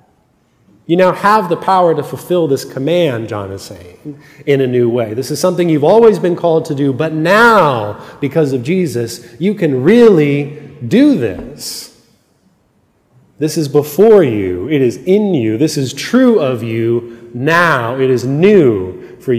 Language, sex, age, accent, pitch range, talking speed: English, male, 30-49, American, 125-165 Hz, 165 wpm